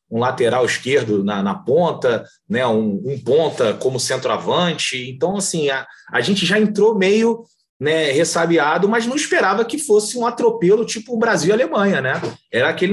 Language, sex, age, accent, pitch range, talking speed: Portuguese, male, 30-49, Brazilian, 140-230 Hz, 165 wpm